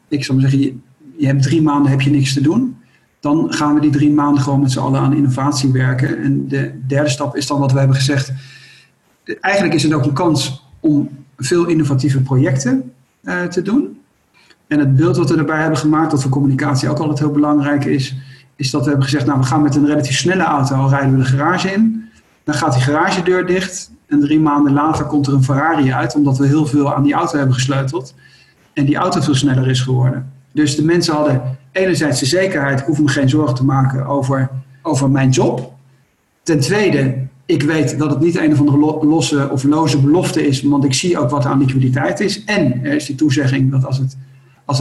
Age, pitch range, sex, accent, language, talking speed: 50-69, 135-155 Hz, male, Dutch, Dutch, 220 wpm